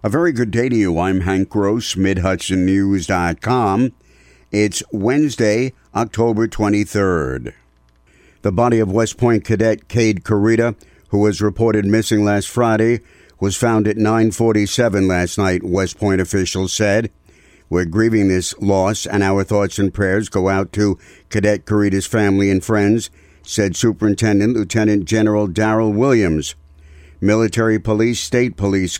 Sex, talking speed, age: male, 135 wpm, 60-79